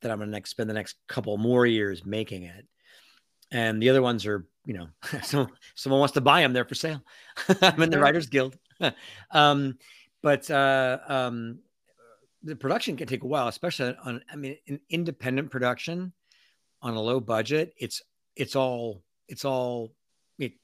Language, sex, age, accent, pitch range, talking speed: English, male, 50-69, American, 105-140 Hz, 175 wpm